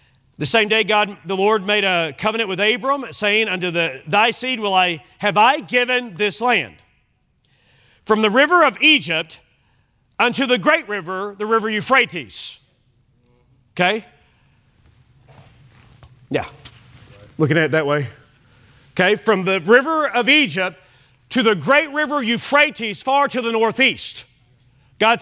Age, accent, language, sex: 40-59, American, English, male